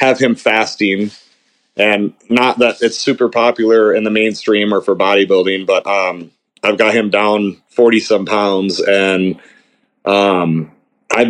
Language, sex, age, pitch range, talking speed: English, male, 30-49, 100-115 Hz, 145 wpm